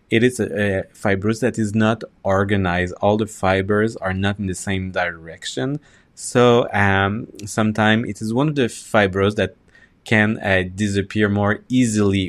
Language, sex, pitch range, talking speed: English, male, 95-110 Hz, 160 wpm